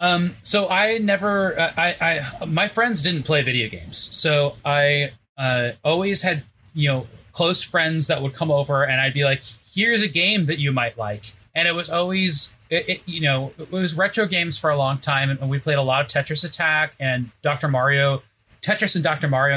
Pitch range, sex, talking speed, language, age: 130-165 Hz, male, 200 wpm, English, 30-49